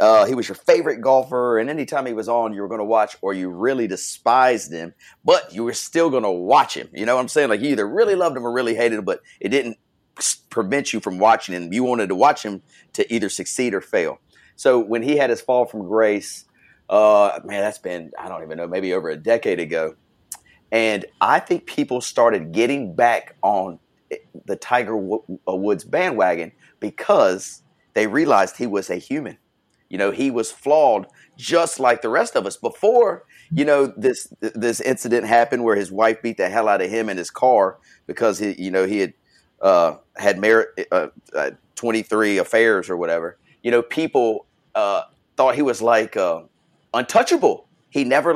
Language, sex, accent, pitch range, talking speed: English, male, American, 110-130 Hz, 200 wpm